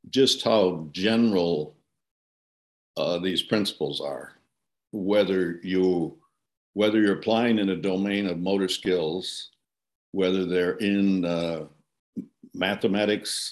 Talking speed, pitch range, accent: 100 wpm, 90-110 Hz, American